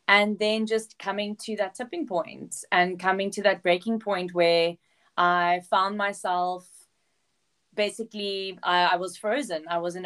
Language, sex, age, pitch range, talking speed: English, female, 20-39, 175-215 Hz, 155 wpm